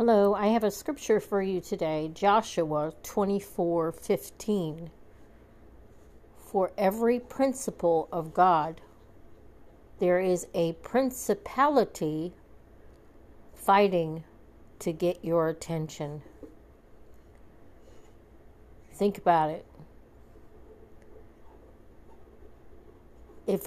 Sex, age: female, 60-79